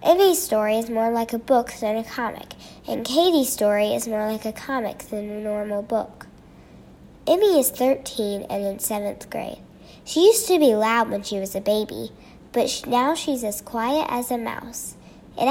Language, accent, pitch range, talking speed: English, American, 215-280 Hz, 185 wpm